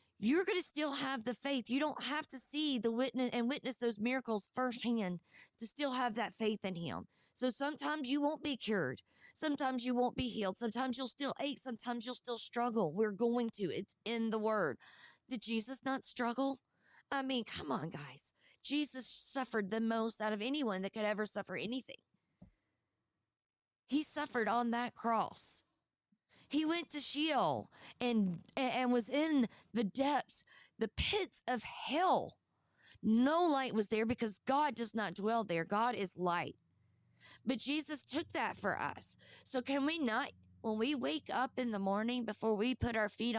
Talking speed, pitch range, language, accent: 175 wpm, 215-265 Hz, English, American